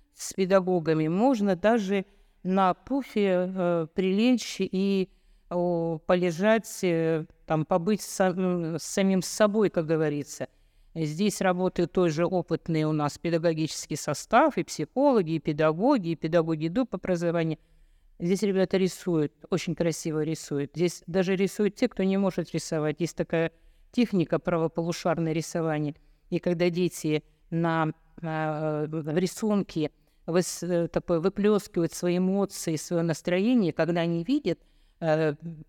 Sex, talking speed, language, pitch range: female, 120 wpm, Russian, 160-200 Hz